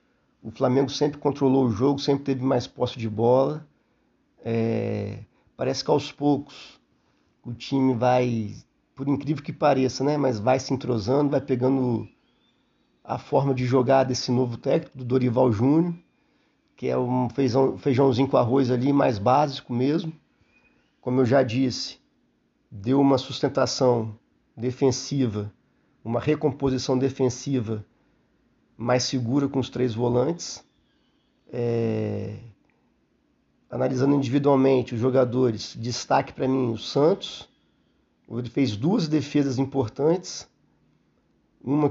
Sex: male